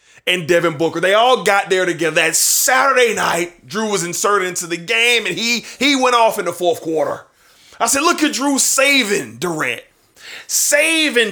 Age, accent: 30-49, American